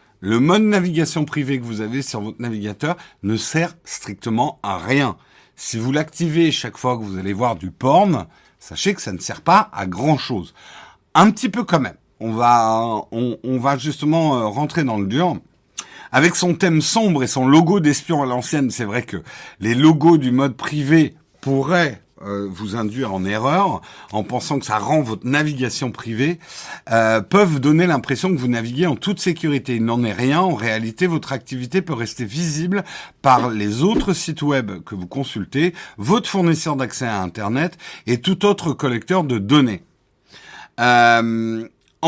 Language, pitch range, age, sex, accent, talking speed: French, 120-170 Hz, 50-69, male, French, 170 wpm